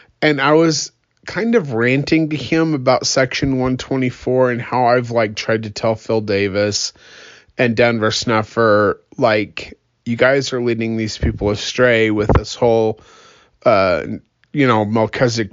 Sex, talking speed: male, 145 wpm